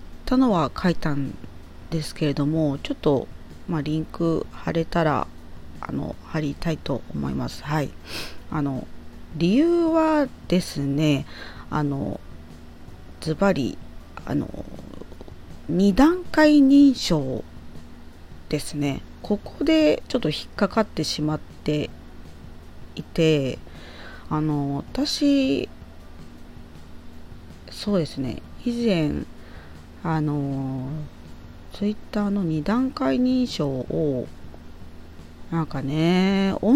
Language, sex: Japanese, female